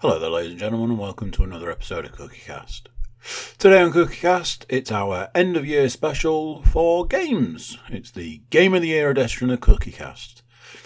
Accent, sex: British, male